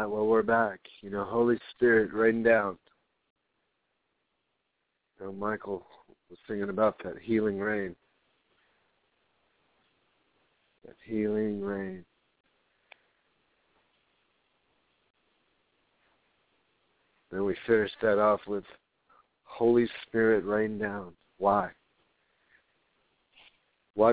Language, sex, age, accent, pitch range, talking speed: English, male, 50-69, American, 105-115 Hz, 80 wpm